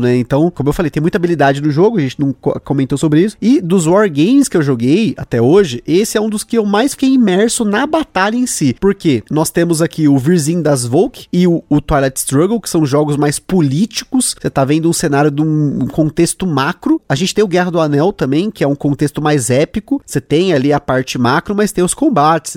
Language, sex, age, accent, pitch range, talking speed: Portuguese, male, 20-39, Brazilian, 145-210 Hz, 240 wpm